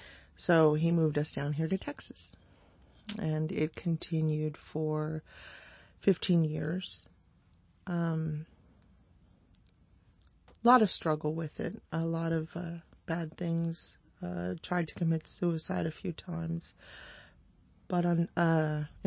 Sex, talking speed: female, 120 wpm